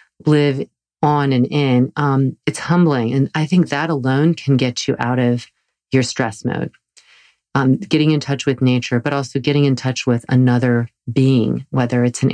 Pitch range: 120-145 Hz